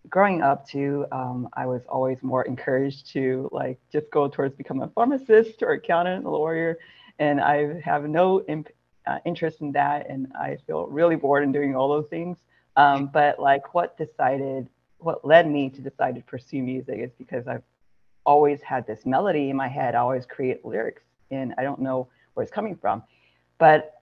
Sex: female